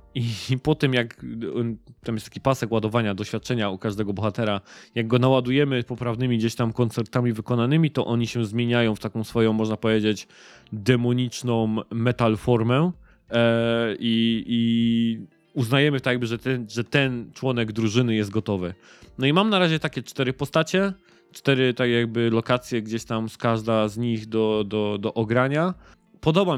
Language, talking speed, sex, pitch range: Polish, 160 wpm, male, 110-130 Hz